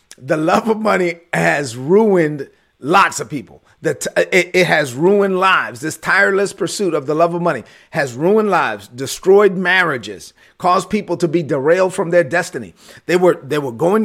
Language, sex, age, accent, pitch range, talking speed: English, male, 40-59, American, 160-195 Hz, 165 wpm